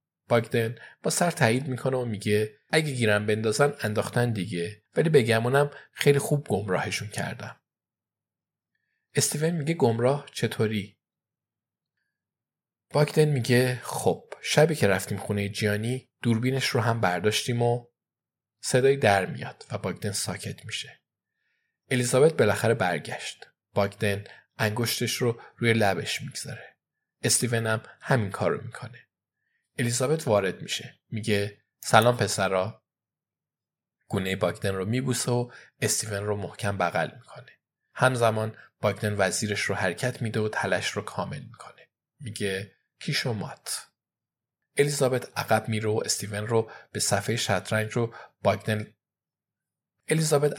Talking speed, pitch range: 105 wpm, 105-130 Hz